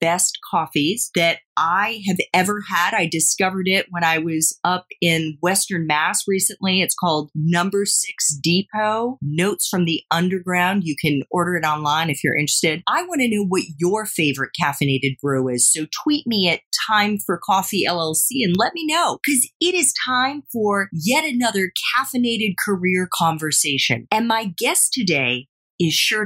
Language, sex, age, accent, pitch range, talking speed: English, female, 40-59, American, 150-205 Hz, 165 wpm